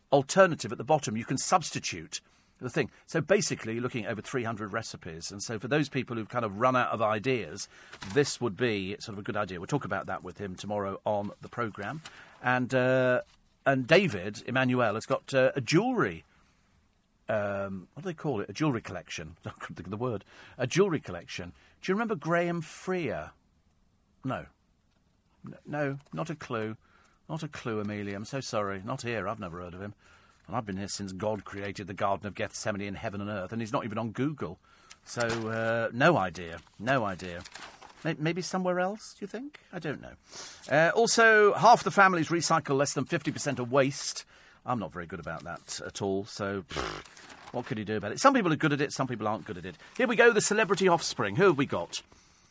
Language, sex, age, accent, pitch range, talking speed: English, male, 40-59, British, 100-145 Hz, 205 wpm